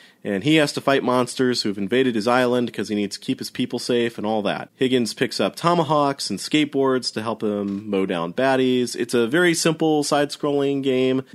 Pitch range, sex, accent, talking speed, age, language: 110-150 Hz, male, American, 205 wpm, 30-49, English